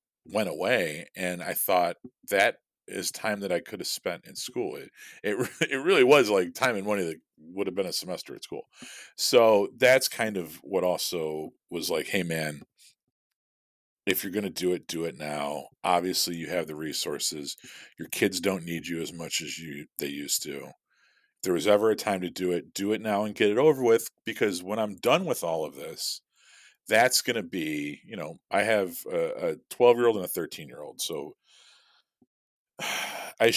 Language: English